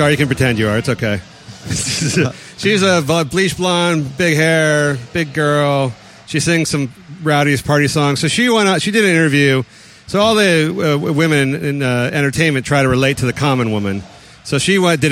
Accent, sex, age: American, male, 40-59